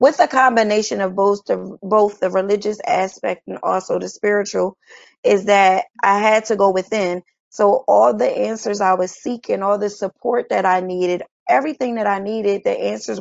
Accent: American